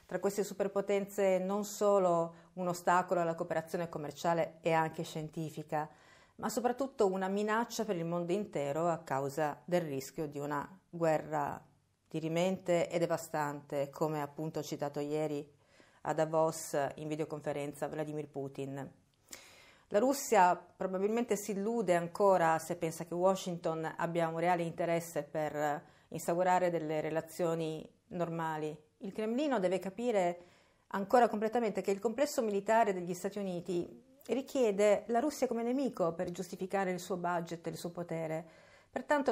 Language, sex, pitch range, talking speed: Italian, female, 155-195 Hz, 135 wpm